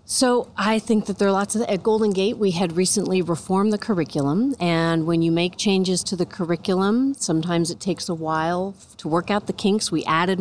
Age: 40-59